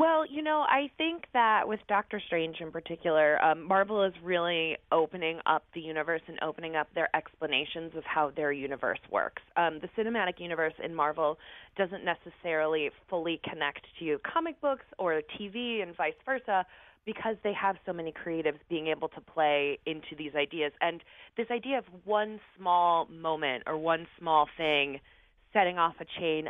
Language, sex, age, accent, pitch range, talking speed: English, female, 20-39, American, 150-200 Hz, 170 wpm